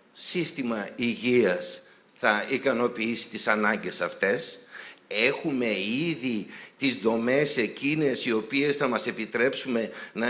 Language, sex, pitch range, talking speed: Greek, male, 120-170 Hz, 105 wpm